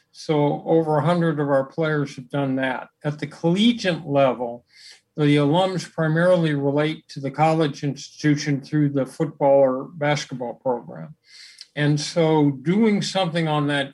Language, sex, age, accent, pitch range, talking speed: English, male, 50-69, American, 140-165 Hz, 145 wpm